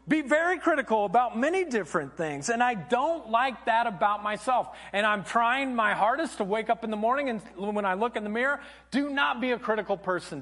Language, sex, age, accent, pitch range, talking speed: English, male, 40-59, American, 160-245 Hz, 220 wpm